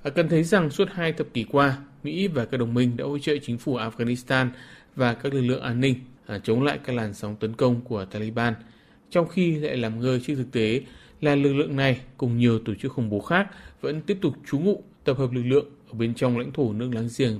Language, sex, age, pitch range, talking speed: Vietnamese, male, 20-39, 120-150 Hz, 240 wpm